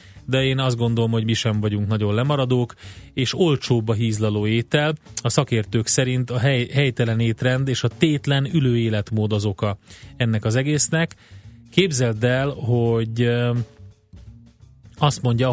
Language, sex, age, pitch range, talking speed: Hungarian, male, 30-49, 110-130 Hz, 145 wpm